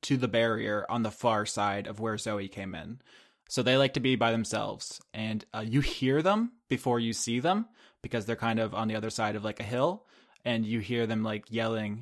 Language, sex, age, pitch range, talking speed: English, male, 20-39, 115-135 Hz, 230 wpm